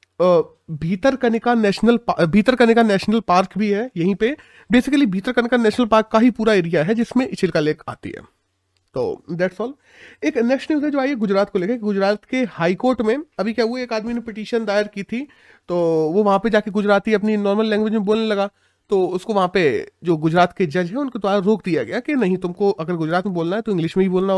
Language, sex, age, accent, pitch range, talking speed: Hindi, male, 30-49, native, 185-230 Hz, 220 wpm